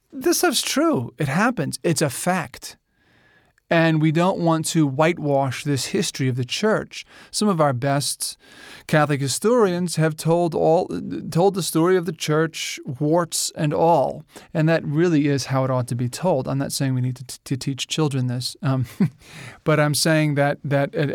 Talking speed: 185 wpm